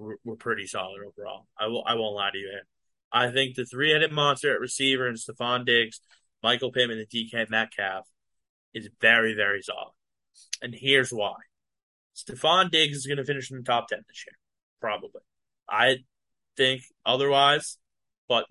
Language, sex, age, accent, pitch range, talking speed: English, male, 20-39, American, 115-145 Hz, 165 wpm